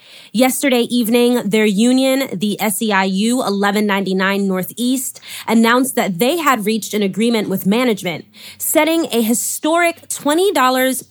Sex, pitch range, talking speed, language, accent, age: female, 195-245 Hz, 115 wpm, English, American, 20-39